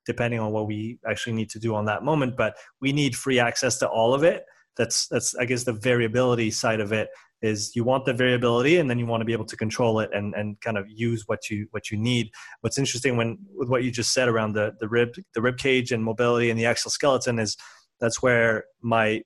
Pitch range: 115-125 Hz